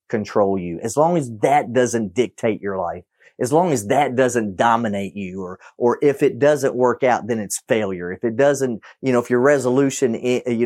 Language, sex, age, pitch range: English, male, 40-59, 115-135 Hz